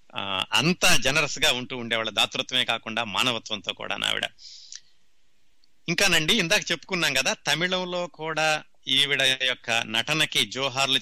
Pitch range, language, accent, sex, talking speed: 120-160 Hz, Telugu, native, male, 115 wpm